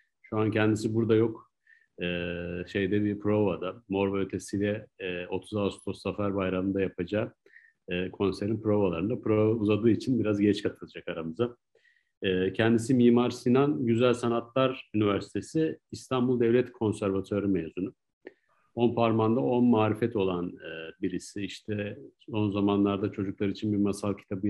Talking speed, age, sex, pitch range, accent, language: 130 wpm, 50-69, male, 95-110 Hz, native, Turkish